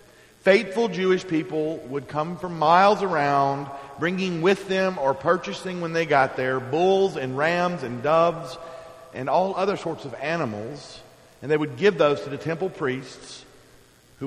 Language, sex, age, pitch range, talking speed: English, male, 40-59, 115-150 Hz, 160 wpm